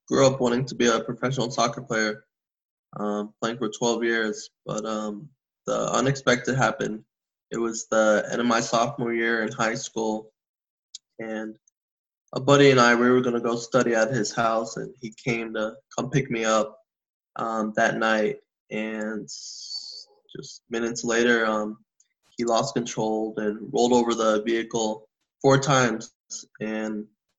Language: English